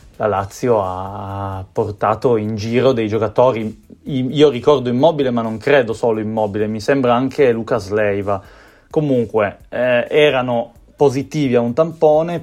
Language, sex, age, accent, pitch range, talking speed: Italian, male, 30-49, native, 105-130 Hz, 135 wpm